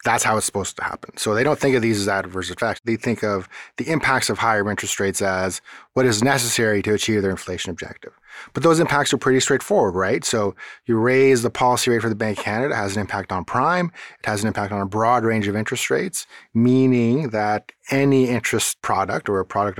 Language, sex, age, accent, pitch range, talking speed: English, male, 30-49, American, 100-130 Hz, 230 wpm